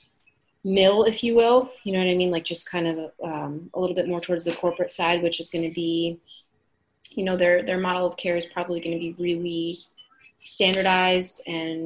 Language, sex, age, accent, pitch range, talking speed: English, female, 30-49, American, 165-190 Hz, 215 wpm